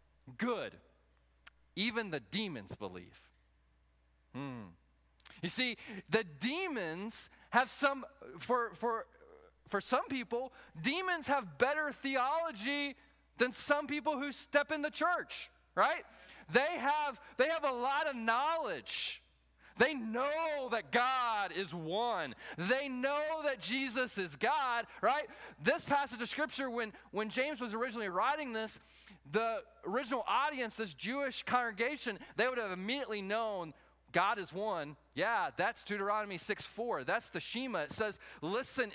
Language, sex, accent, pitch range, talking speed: English, male, American, 190-270 Hz, 130 wpm